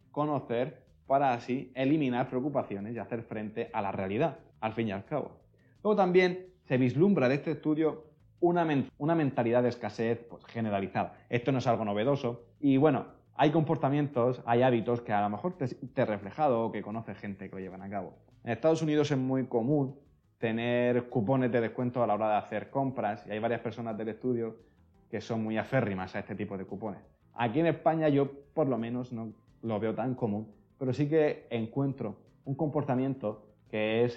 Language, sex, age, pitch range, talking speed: Spanish, male, 20-39, 110-135 Hz, 190 wpm